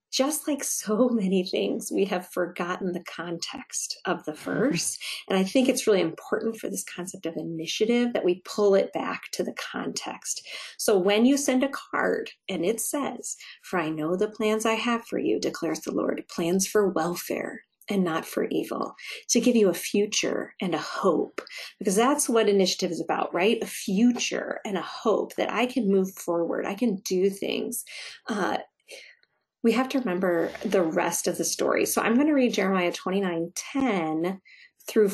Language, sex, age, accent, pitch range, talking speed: English, female, 40-59, American, 180-230 Hz, 185 wpm